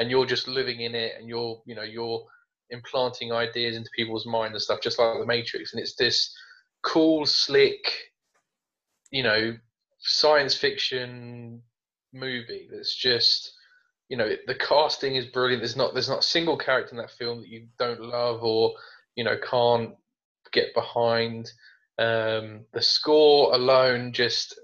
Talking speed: 160 wpm